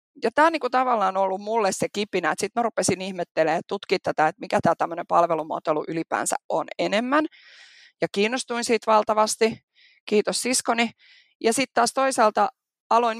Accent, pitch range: native, 180-230 Hz